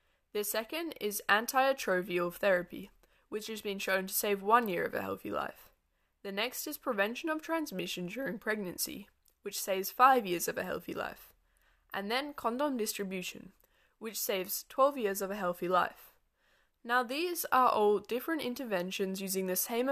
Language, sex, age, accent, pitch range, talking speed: English, female, 10-29, Australian, 190-245 Hz, 165 wpm